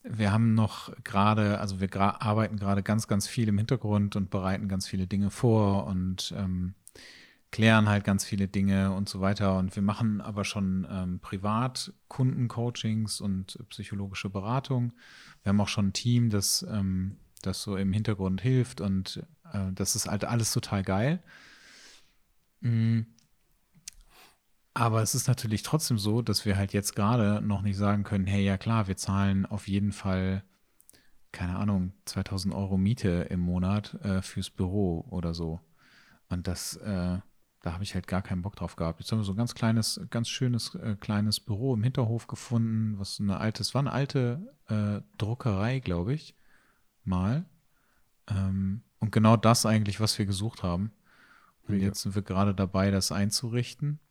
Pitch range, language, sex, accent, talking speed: 95-115 Hz, German, male, German, 170 wpm